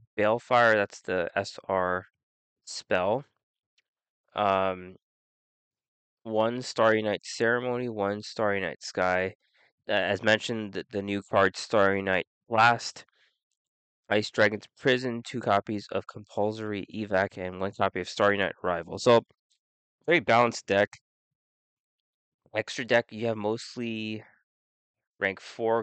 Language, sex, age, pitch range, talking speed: English, male, 20-39, 95-110 Hz, 115 wpm